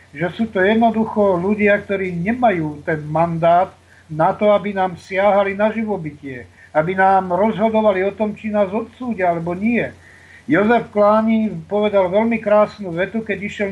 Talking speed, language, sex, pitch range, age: 150 wpm, Slovak, male, 165-215 Hz, 50-69